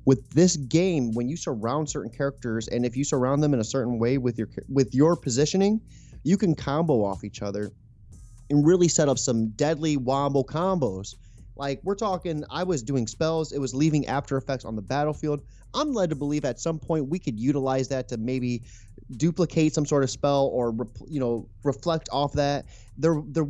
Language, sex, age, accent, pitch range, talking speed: English, male, 30-49, American, 120-155 Hz, 200 wpm